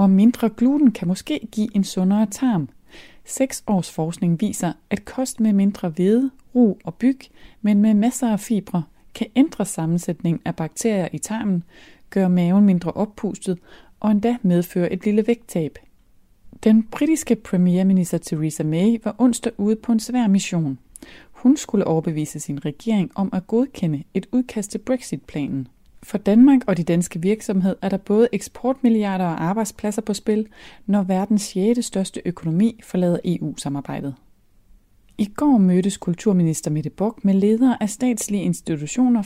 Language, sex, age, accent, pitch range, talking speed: Danish, female, 30-49, native, 170-225 Hz, 150 wpm